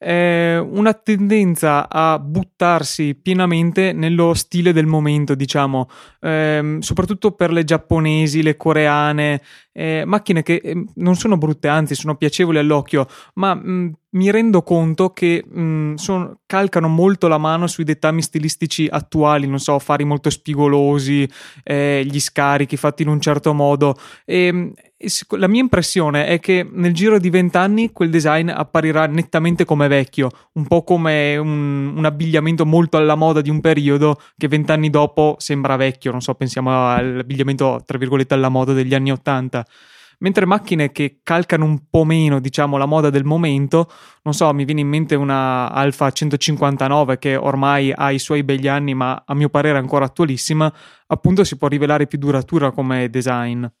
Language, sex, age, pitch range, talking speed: Italian, male, 20-39, 140-170 Hz, 160 wpm